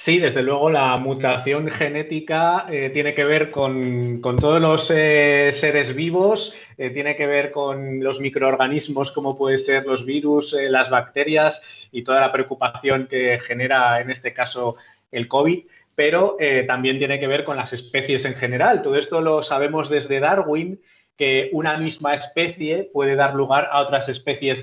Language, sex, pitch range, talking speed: Spanish, male, 135-175 Hz, 170 wpm